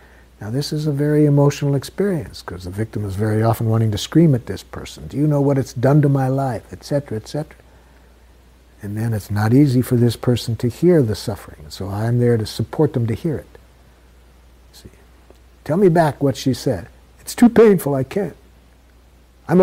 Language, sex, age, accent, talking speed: English, male, 60-79, American, 195 wpm